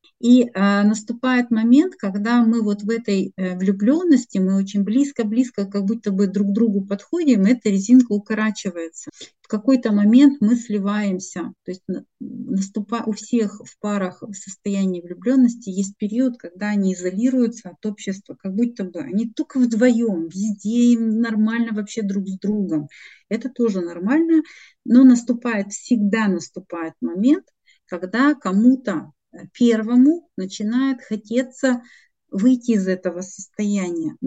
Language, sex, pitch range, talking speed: Russian, female, 200-250 Hz, 135 wpm